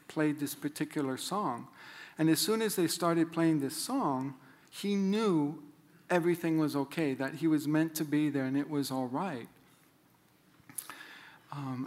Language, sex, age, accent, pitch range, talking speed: English, male, 50-69, American, 135-160 Hz, 155 wpm